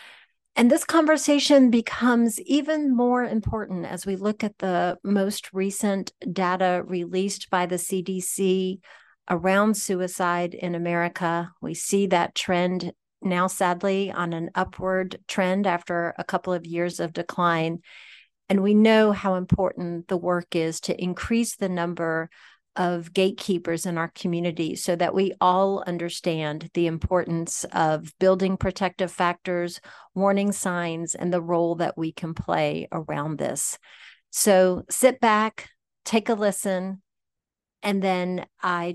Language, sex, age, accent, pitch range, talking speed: English, female, 40-59, American, 175-195 Hz, 135 wpm